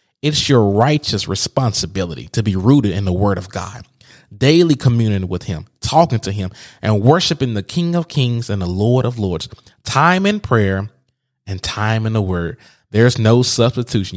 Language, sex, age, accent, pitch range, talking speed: English, male, 20-39, American, 100-130 Hz, 175 wpm